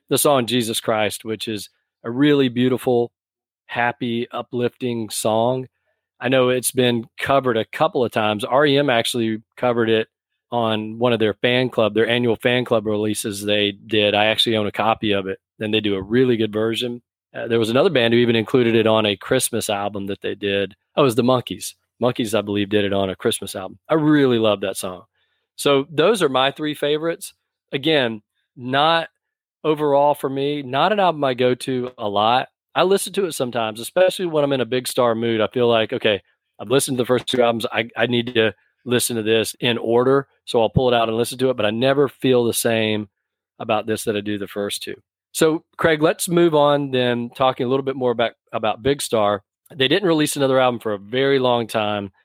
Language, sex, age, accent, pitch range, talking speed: English, male, 40-59, American, 110-135 Hz, 215 wpm